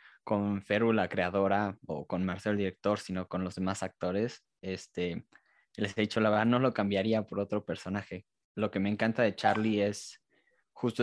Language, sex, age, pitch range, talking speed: English, male, 20-39, 100-110 Hz, 180 wpm